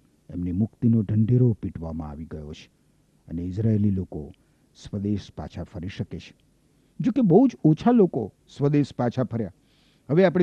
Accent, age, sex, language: native, 50-69, male, Gujarati